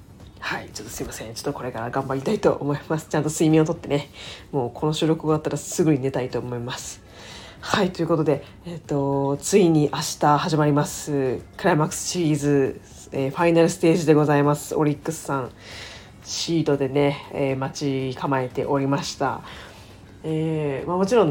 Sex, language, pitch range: female, Japanese, 130-165 Hz